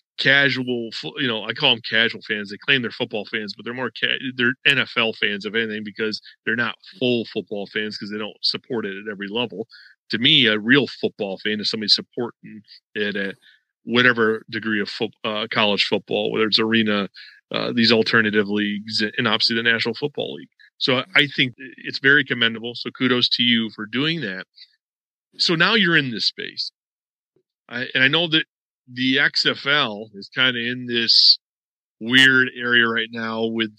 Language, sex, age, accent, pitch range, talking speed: English, male, 40-59, American, 110-125 Hz, 180 wpm